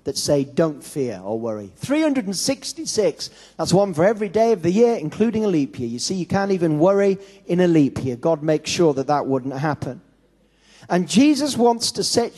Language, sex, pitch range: English, male, 150-205 Hz